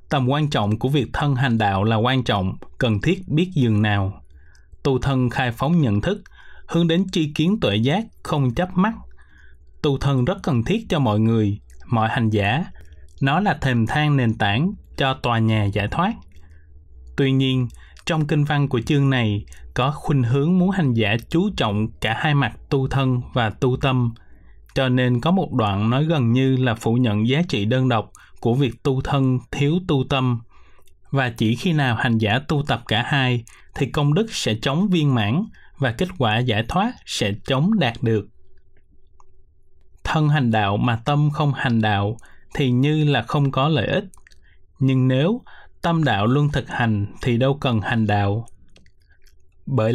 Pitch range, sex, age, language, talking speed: 110-145 Hz, male, 20-39, Vietnamese, 185 wpm